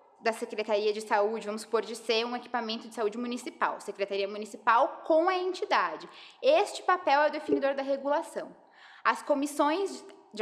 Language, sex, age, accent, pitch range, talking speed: Portuguese, female, 20-39, Brazilian, 225-330 Hz, 160 wpm